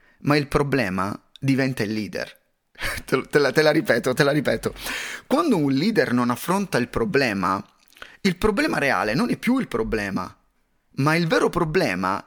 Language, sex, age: Italian, male, 30-49